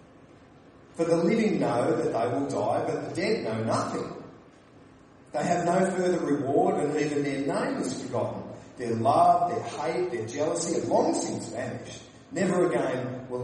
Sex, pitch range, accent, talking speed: male, 125-180 Hz, Australian, 165 wpm